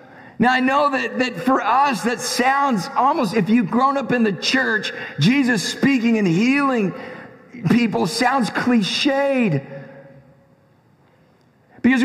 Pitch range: 220-270 Hz